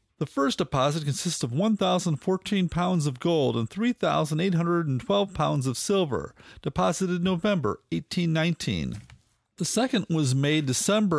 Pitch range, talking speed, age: 145-190 Hz, 120 wpm, 40-59